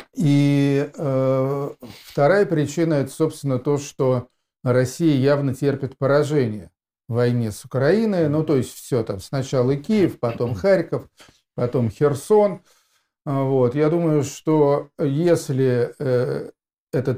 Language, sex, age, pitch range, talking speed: Russian, male, 40-59, 125-150 Hz, 120 wpm